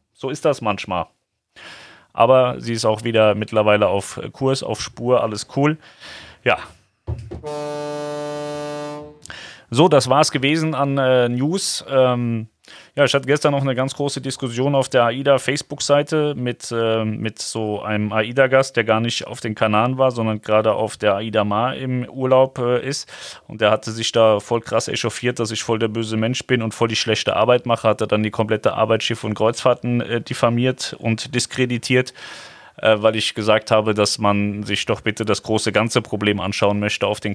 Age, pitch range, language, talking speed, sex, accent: 30-49, 110-130 Hz, German, 175 wpm, male, German